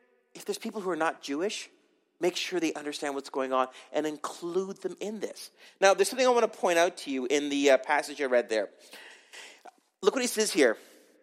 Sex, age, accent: male, 40-59, American